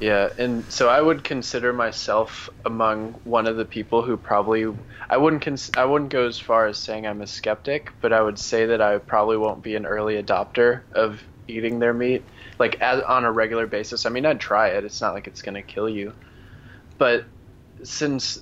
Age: 20-39